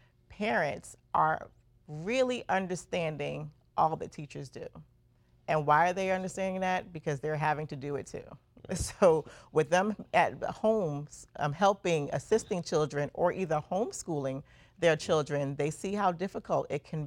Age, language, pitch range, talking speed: 40-59, English, 145-180 Hz, 140 wpm